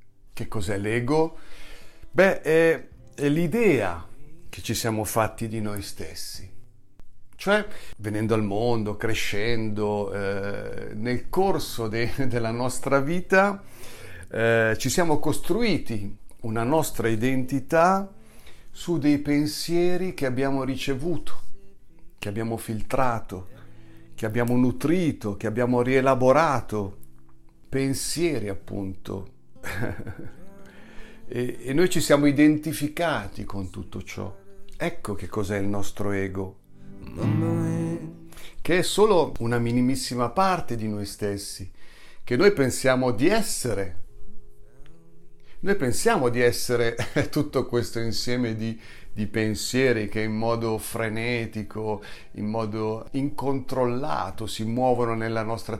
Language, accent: Italian, native